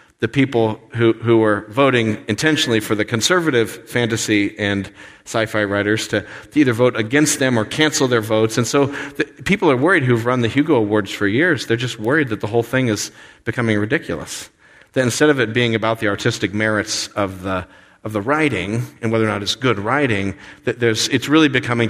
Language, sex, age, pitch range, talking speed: English, male, 40-59, 100-120 Hz, 200 wpm